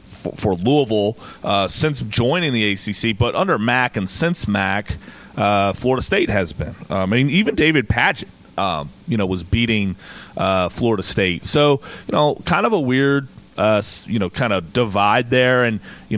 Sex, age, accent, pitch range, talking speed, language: male, 30-49, American, 95-115 Hz, 180 wpm, English